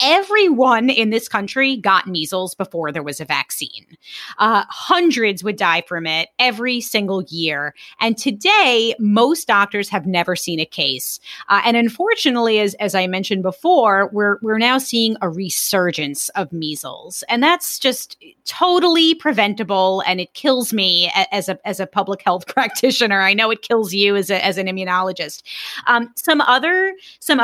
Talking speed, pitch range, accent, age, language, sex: 165 wpm, 190-260 Hz, American, 30-49, English, female